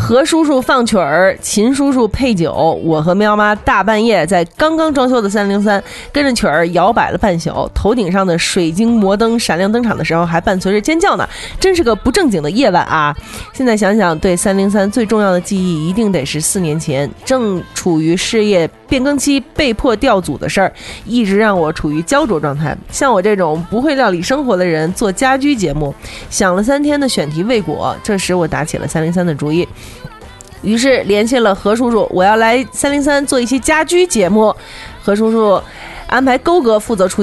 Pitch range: 175-245 Hz